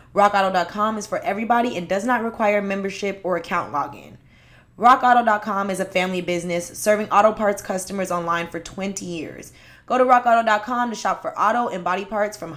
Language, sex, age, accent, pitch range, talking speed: English, female, 20-39, American, 180-230 Hz, 170 wpm